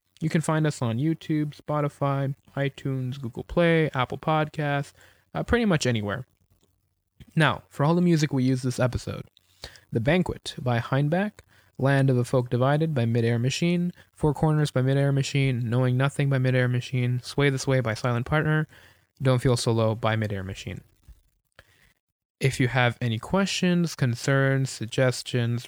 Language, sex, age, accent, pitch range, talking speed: English, male, 20-39, American, 115-150 Hz, 155 wpm